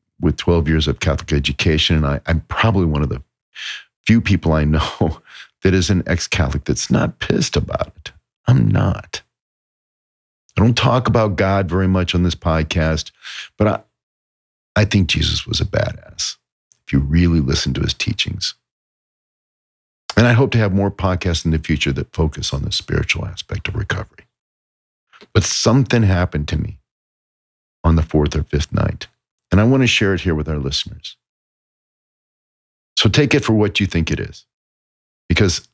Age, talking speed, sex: 50-69, 170 wpm, male